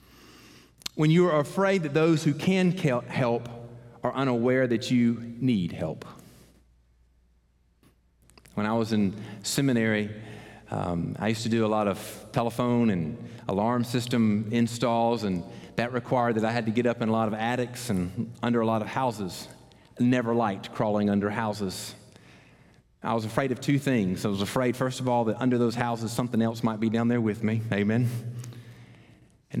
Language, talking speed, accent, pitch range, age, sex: English, 170 wpm, American, 110-150 Hz, 40-59, male